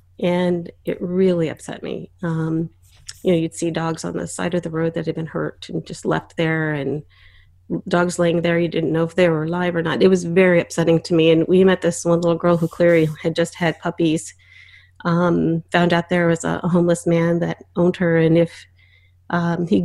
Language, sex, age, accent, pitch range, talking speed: English, female, 30-49, American, 165-185 Hz, 220 wpm